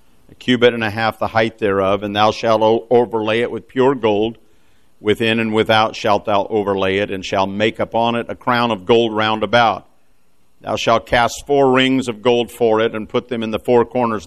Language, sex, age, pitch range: English, male, 50-69, 110-130 Hz